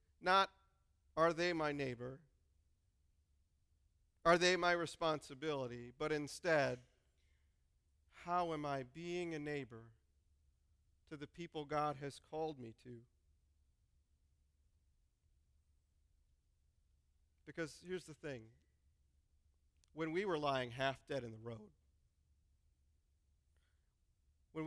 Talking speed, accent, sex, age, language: 95 wpm, American, male, 40-59, English